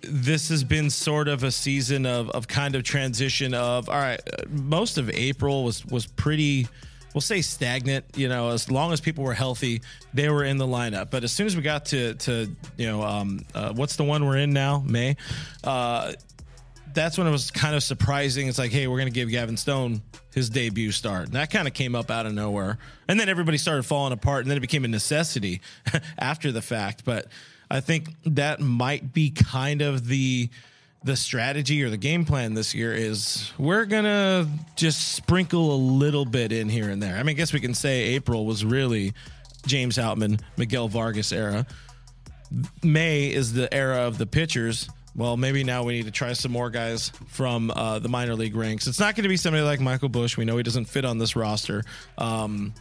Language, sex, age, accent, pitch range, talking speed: English, male, 30-49, American, 120-145 Hz, 210 wpm